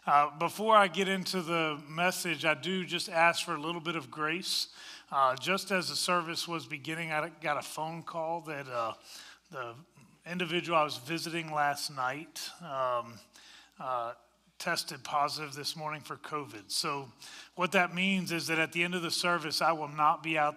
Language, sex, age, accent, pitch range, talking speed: English, male, 30-49, American, 155-185 Hz, 180 wpm